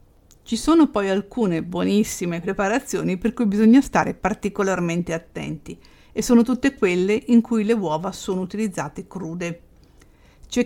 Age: 50-69